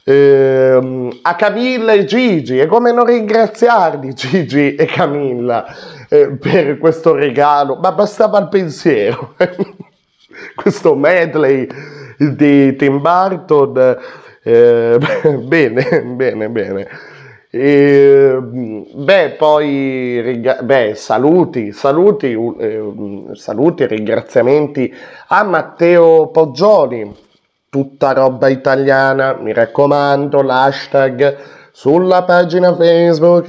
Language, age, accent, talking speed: Italian, 30-49, native, 90 wpm